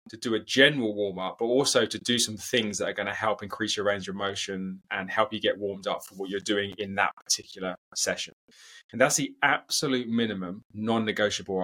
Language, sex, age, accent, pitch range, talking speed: English, male, 20-39, British, 100-120 Hz, 210 wpm